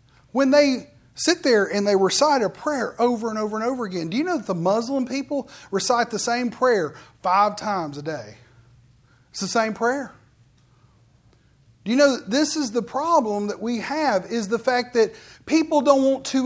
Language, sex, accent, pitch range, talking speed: English, male, American, 185-270 Hz, 195 wpm